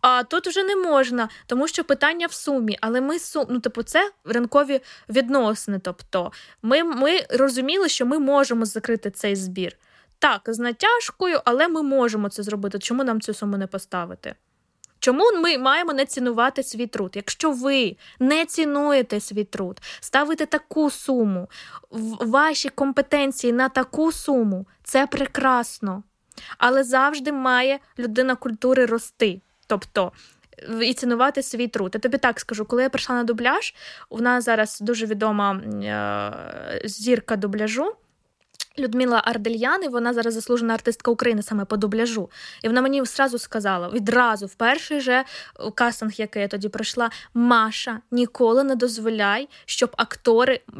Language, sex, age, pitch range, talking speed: Ukrainian, female, 20-39, 220-275 Hz, 145 wpm